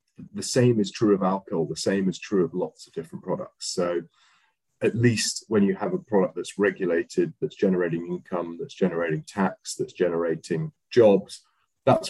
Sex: male